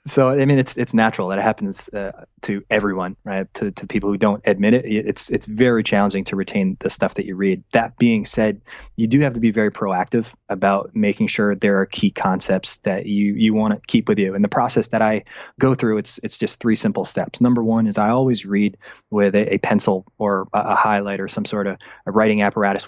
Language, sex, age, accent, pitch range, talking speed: English, male, 20-39, American, 100-120 Hz, 235 wpm